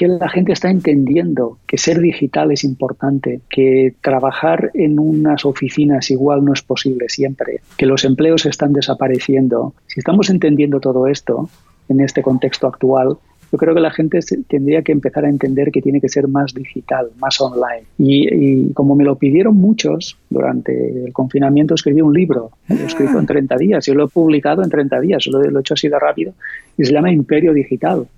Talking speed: 195 wpm